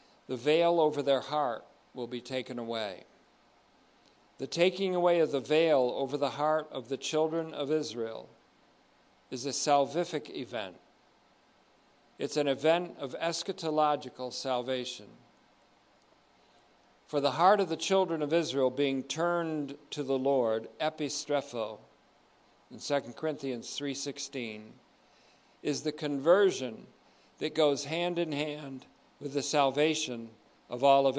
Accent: American